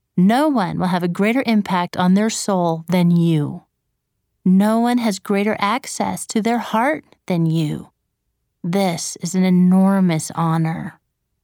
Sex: female